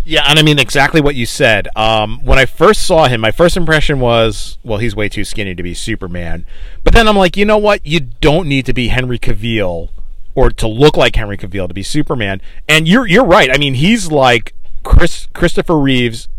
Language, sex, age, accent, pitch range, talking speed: English, male, 40-59, American, 115-170 Hz, 220 wpm